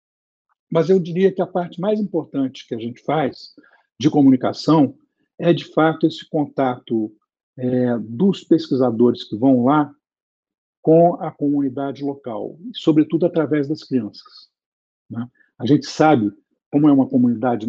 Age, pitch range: 50-69, 130-165 Hz